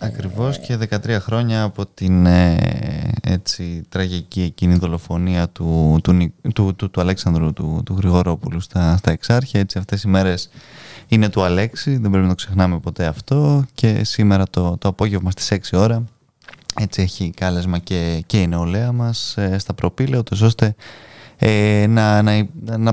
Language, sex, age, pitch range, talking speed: Greek, male, 20-39, 95-115 Hz, 155 wpm